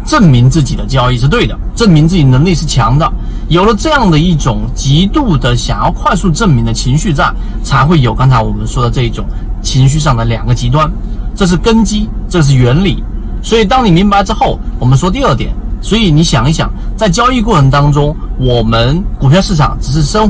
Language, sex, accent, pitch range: Chinese, male, native, 120-170 Hz